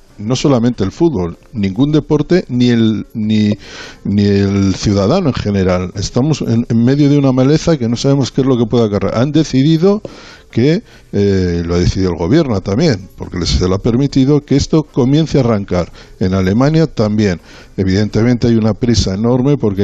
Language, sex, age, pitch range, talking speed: Spanish, male, 60-79, 105-130 Hz, 180 wpm